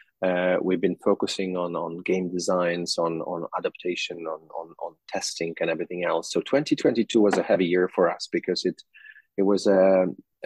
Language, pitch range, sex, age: English, 90-105 Hz, male, 30-49